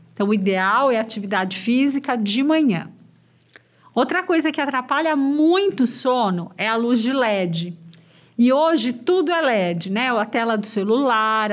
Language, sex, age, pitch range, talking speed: Portuguese, female, 50-69, 215-285 Hz, 155 wpm